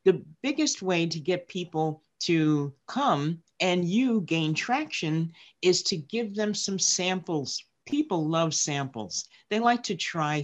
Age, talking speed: 50-69, 145 wpm